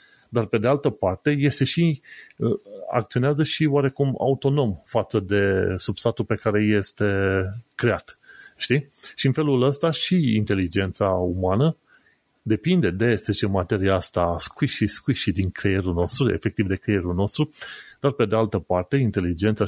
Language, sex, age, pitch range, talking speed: Romanian, male, 30-49, 100-140 Hz, 150 wpm